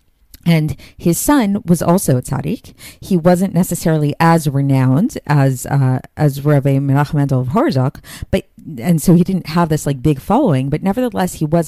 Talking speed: 170 wpm